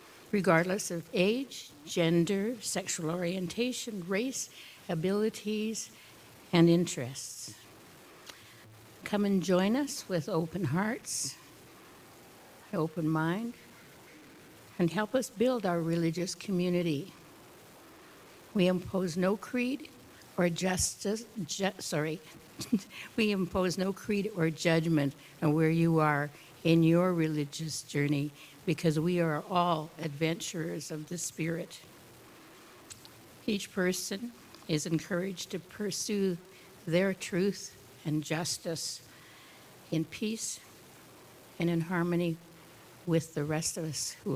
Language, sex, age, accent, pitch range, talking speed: English, female, 60-79, American, 160-195 Hz, 105 wpm